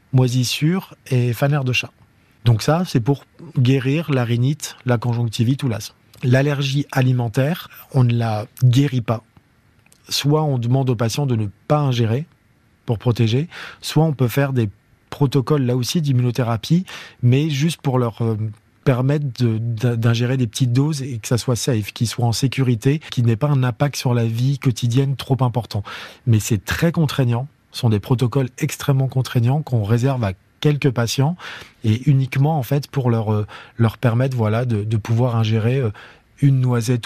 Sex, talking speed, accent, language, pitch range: male, 160 wpm, French, French, 115-135 Hz